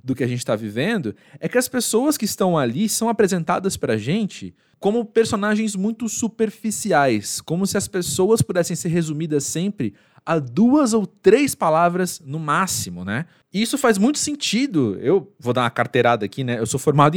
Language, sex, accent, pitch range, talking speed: Portuguese, male, Brazilian, 135-195 Hz, 185 wpm